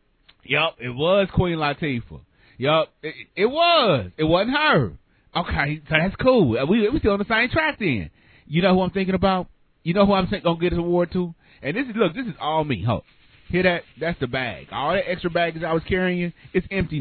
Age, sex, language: 30-49, male, English